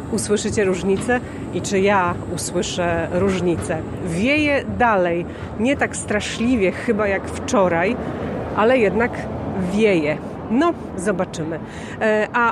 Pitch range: 185-225 Hz